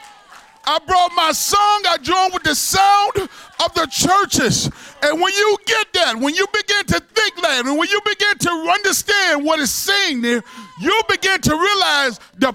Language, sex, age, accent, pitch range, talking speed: English, male, 40-59, American, 250-410 Hz, 180 wpm